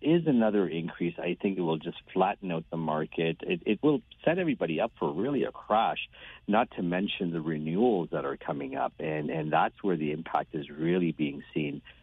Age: 50-69